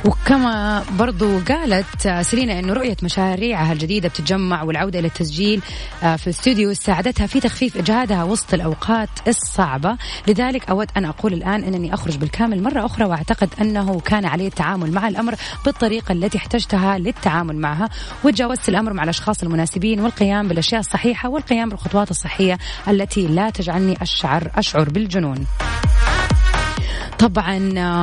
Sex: female